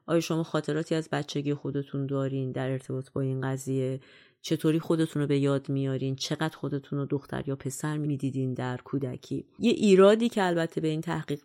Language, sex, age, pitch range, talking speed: Persian, female, 30-49, 135-155 Hz, 180 wpm